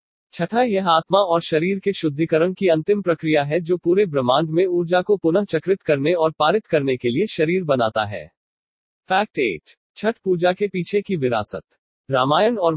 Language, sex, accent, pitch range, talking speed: Hindi, male, native, 145-185 Hz, 180 wpm